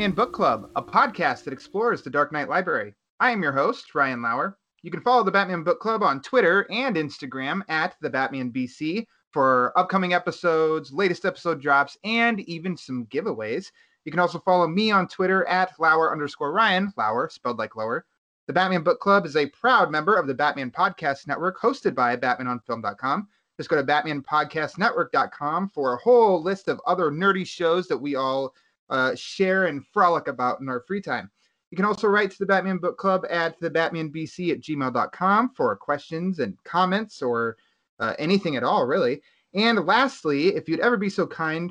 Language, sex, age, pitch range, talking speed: English, male, 30-49, 140-195 Hz, 185 wpm